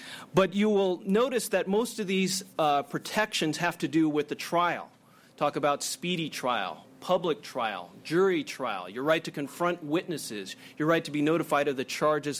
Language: English